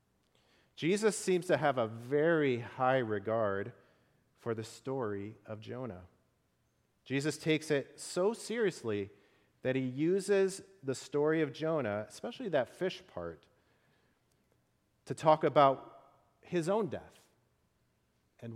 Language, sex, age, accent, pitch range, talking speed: English, male, 40-59, American, 115-150 Hz, 115 wpm